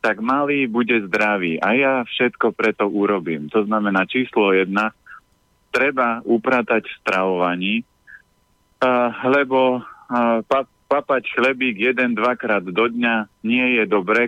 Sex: male